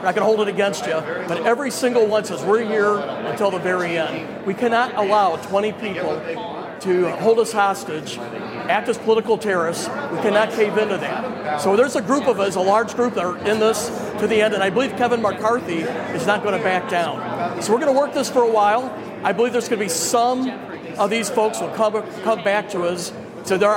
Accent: American